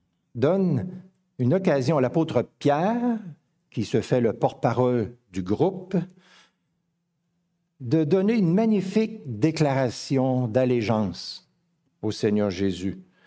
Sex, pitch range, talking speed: male, 120-170 Hz, 100 wpm